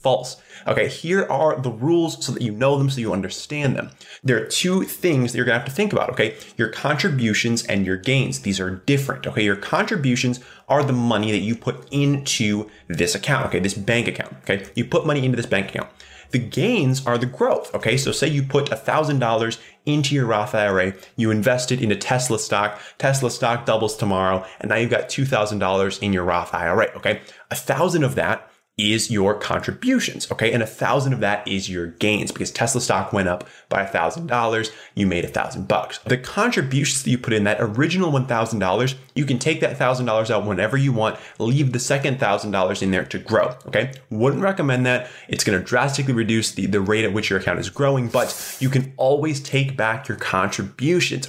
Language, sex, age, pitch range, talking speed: English, male, 20-39, 105-135 Hz, 215 wpm